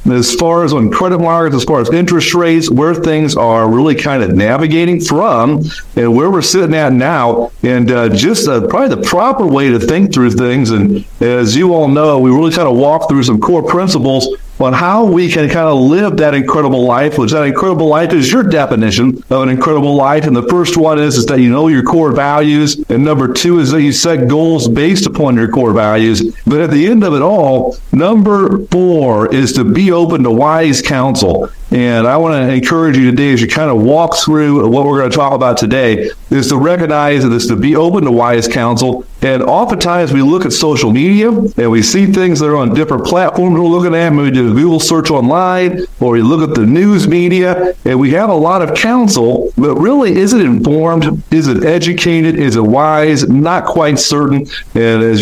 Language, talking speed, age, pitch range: English, 215 wpm, 50-69, 125-170 Hz